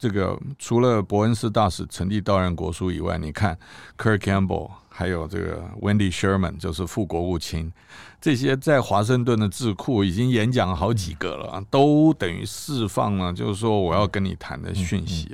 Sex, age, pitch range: male, 50-69, 90-110 Hz